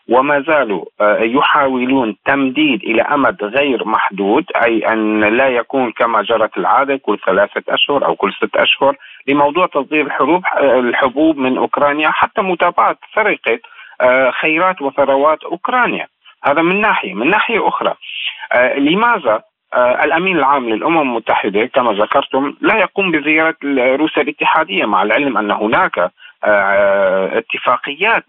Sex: male